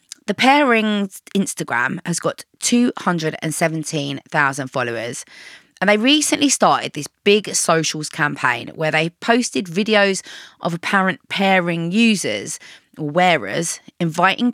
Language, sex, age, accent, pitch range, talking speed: English, female, 20-39, British, 170-245 Hz, 105 wpm